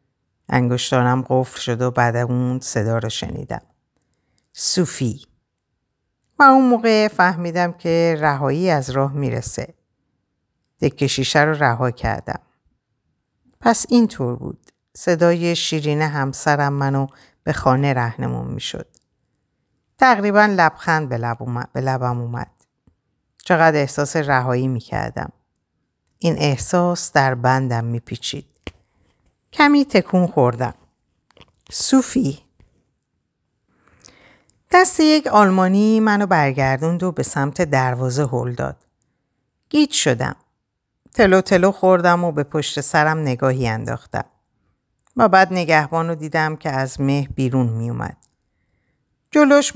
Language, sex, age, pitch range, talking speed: Persian, female, 50-69, 130-180 Hz, 105 wpm